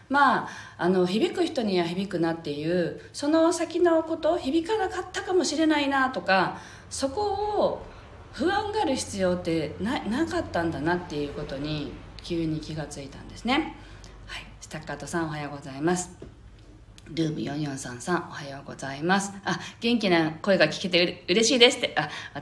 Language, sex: Japanese, female